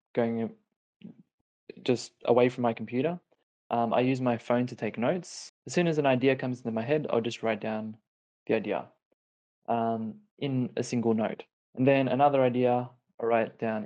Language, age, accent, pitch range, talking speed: English, 20-39, Australian, 115-130 Hz, 180 wpm